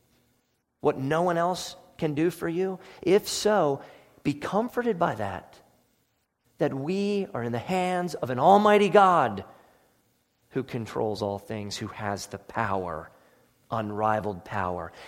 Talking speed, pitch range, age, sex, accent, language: 135 wpm, 115-175 Hz, 40-59, male, American, English